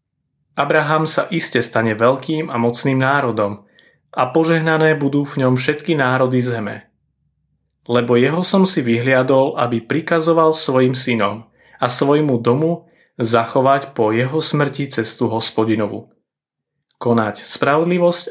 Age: 30-49